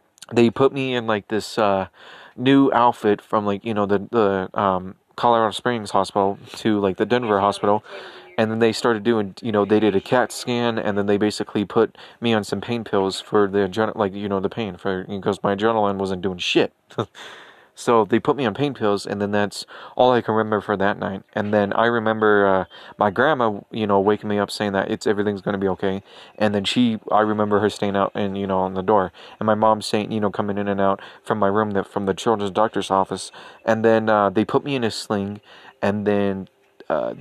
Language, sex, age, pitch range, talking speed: English, male, 20-39, 100-115 Hz, 230 wpm